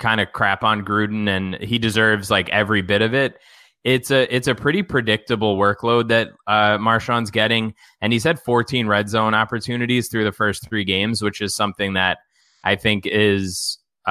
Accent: American